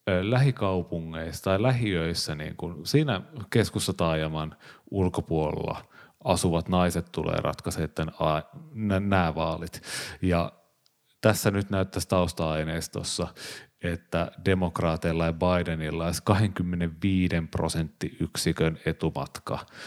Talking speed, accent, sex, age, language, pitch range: 85 wpm, native, male, 30-49, Finnish, 80-95 Hz